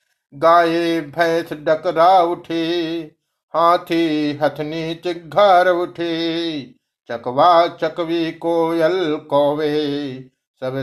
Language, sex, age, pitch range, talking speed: Hindi, male, 60-79, 130-165 Hz, 70 wpm